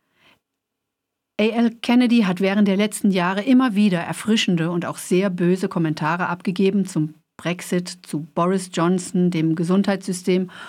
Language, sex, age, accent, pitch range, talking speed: German, female, 50-69, German, 165-205 Hz, 130 wpm